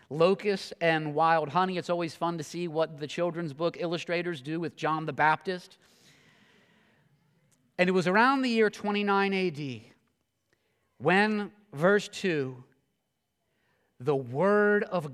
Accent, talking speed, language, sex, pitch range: American, 130 wpm, English, male, 170-210 Hz